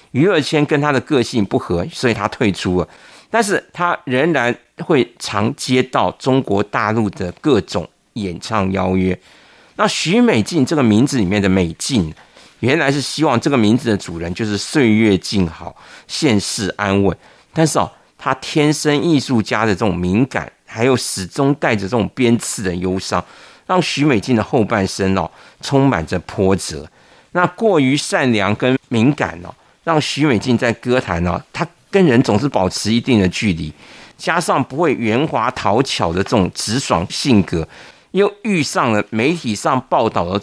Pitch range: 95-130 Hz